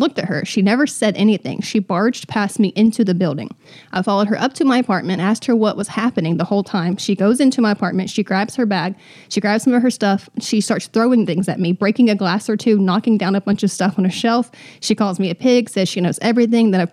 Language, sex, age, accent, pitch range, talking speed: English, female, 20-39, American, 195-235 Hz, 265 wpm